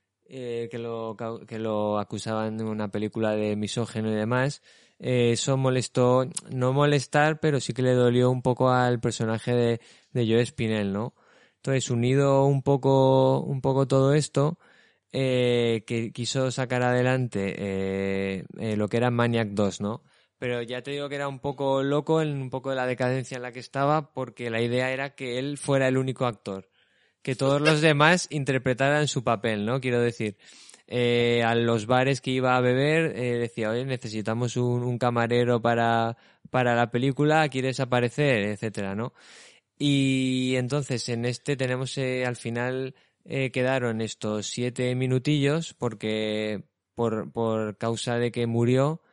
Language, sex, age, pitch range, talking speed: Spanish, male, 20-39, 115-130 Hz, 165 wpm